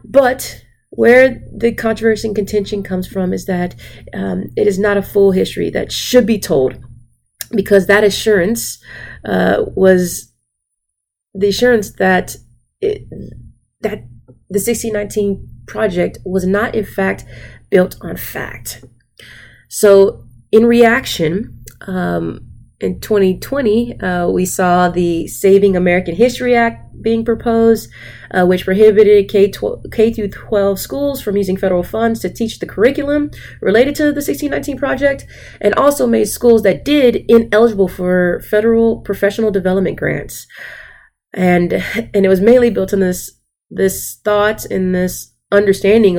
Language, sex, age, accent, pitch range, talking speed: English, female, 30-49, American, 180-225 Hz, 130 wpm